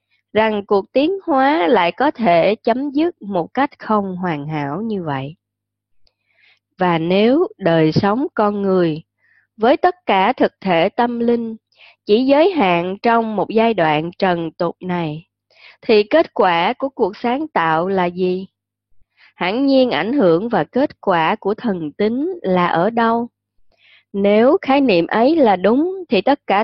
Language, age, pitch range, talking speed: Vietnamese, 20-39, 165-235 Hz, 160 wpm